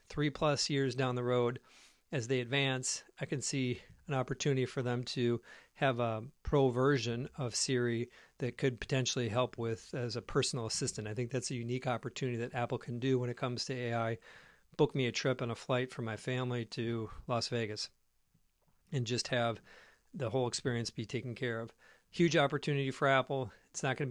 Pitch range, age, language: 120-140 Hz, 50-69, English